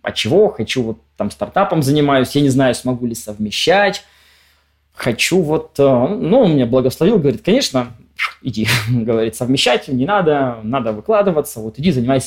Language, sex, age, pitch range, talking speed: Russian, male, 20-39, 120-160 Hz, 150 wpm